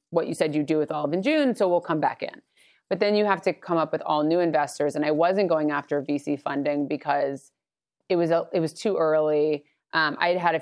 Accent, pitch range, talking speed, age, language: American, 150-190 Hz, 260 wpm, 30-49, English